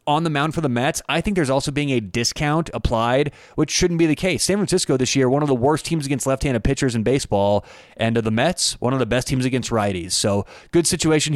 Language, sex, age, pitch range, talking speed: English, male, 30-49, 120-150 Hz, 250 wpm